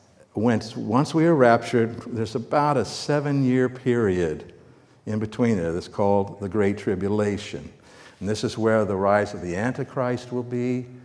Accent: American